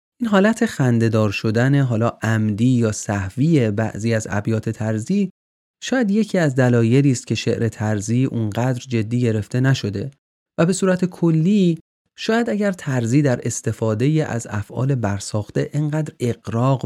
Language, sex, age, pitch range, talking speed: Persian, male, 30-49, 110-145 Hz, 135 wpm